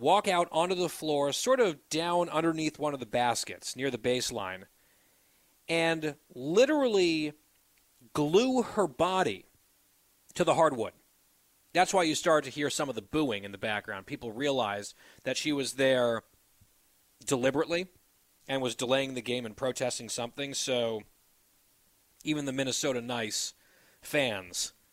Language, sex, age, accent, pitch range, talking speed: English, male, 30-49, American, 115-165 Hz, 140 wpm